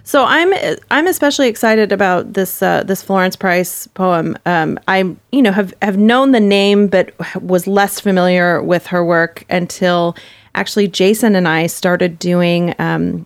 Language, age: English, 30-49